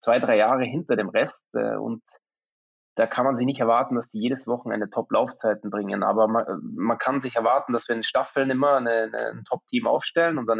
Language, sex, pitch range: German, male, 115-130 Hz